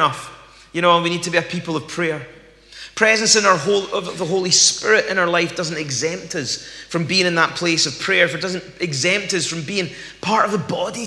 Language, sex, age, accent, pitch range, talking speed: English, male, 30-49, British, 165-195 Hz, 230 wpm